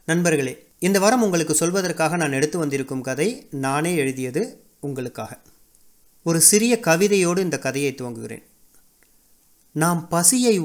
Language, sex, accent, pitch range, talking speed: Tamil, male, native, 145-200 Hz, 115 wpm